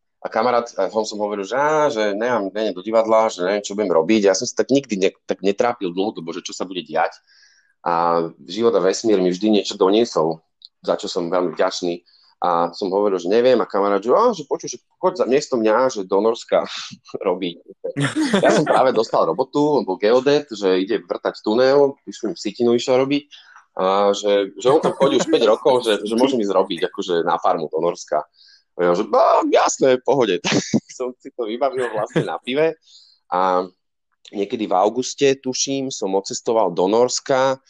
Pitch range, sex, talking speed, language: 95-130 Hz, male, 190 wpm, Slovak